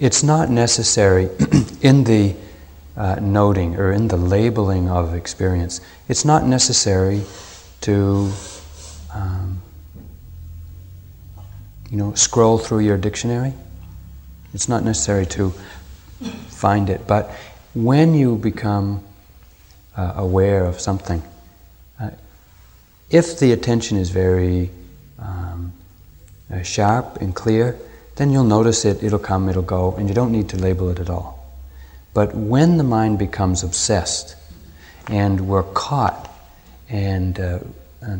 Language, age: English, 30-49